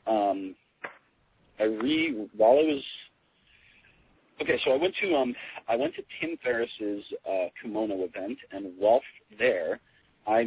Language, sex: English, male